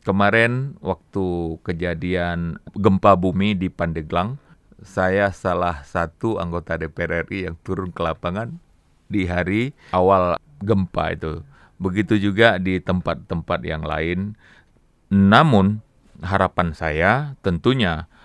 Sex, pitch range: male, 90-120 Hz